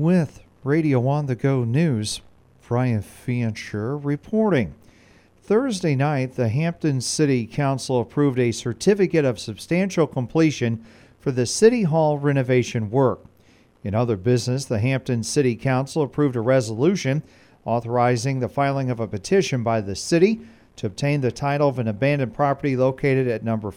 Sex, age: male, 40-59